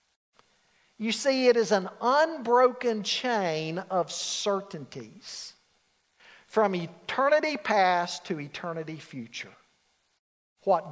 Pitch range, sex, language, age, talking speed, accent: 205-285 Hz, male, English, 50-69, 90 wpm, American